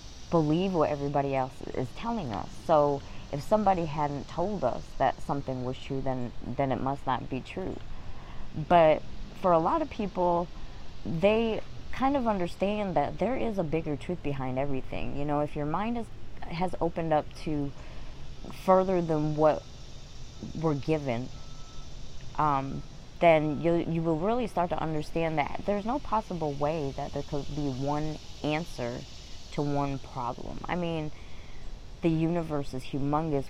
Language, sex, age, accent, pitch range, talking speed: English, female, 20-39, American, 135-165 Hz, 155 wpm